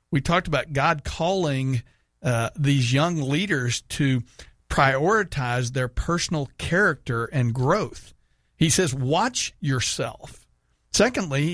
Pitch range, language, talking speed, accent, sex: 125-155 Hz, English, 110 wpm, American, male